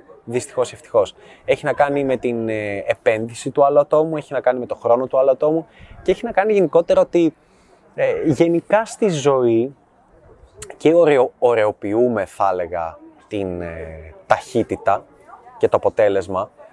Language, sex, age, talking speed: Greek, male, 20-39, 140 wpm